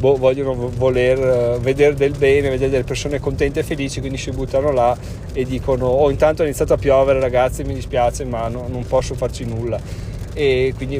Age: 30-49